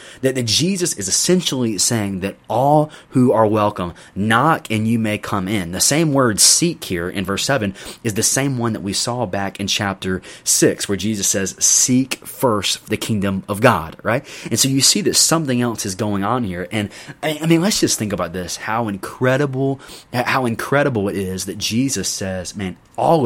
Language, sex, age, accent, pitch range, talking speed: English, male, 30-49, American, 100-125 Hz, 195 wpm